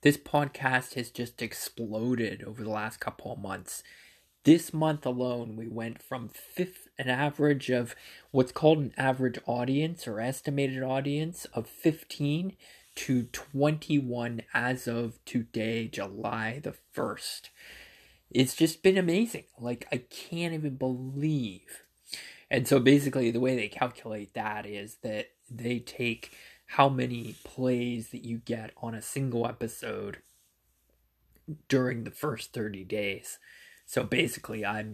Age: 20-39